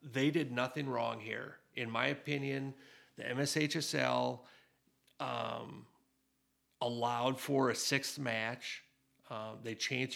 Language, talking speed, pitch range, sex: English, 110 wpm, 115-140 Hz, male